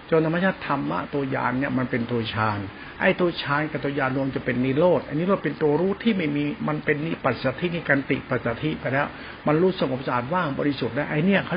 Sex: male